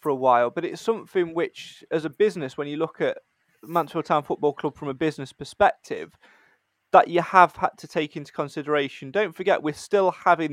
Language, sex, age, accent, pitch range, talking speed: English, male, 20-39, British, 145-180 Hz, 200 wpm